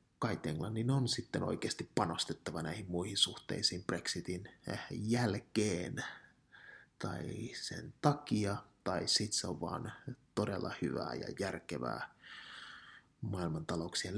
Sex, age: male, 30-49